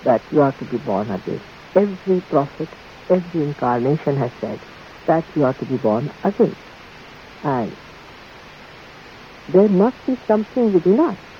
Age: 60-79